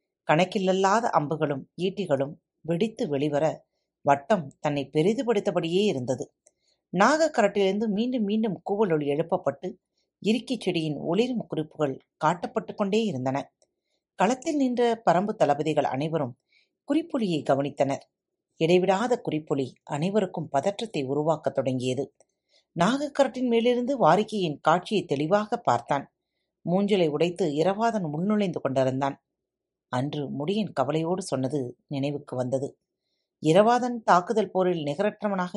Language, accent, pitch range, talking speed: Tamil, native, 145-210 Hz, 95 wpm